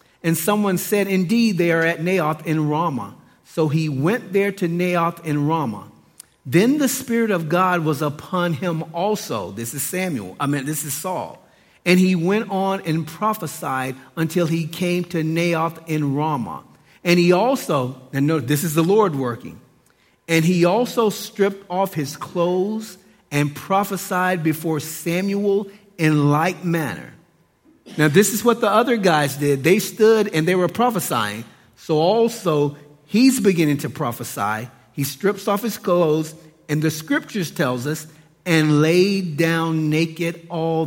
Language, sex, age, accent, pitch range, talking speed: English, male, 40-59, American, 150-185 Hz, 155 wpm